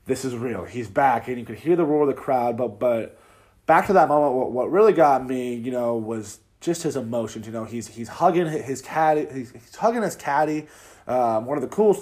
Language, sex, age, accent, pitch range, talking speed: English, male, 20-39, American, 115-150 Hz, 240 wpm